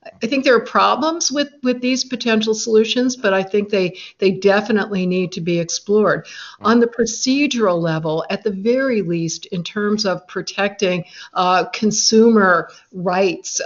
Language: English